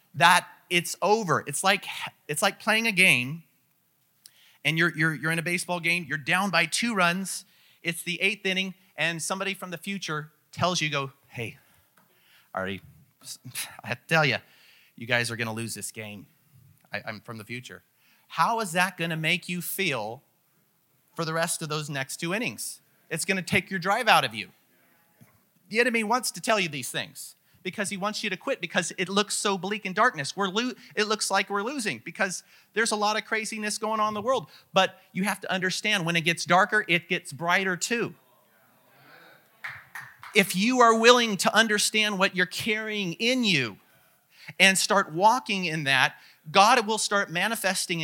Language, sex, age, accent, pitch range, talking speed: English, male, 30-49, American, 165-210 Hz, 190 wpm